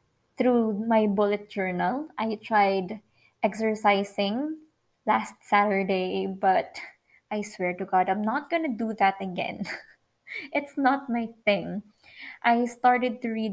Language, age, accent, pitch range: Filipino, 20-39, native, 195-250 Hz